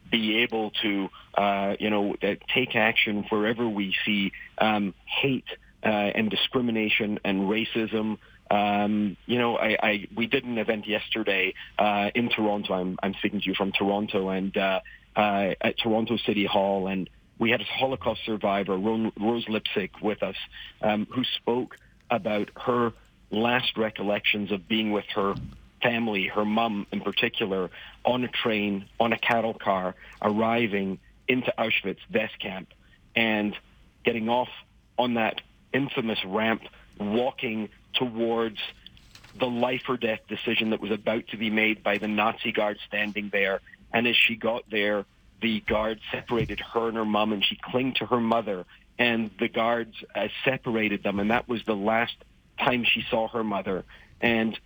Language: English